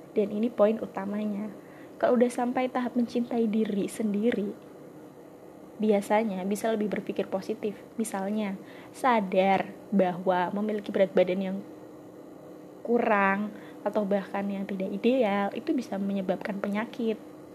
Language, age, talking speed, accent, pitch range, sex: Indonesian, 20-39, 115 wpm, native, 200-245 Hz, female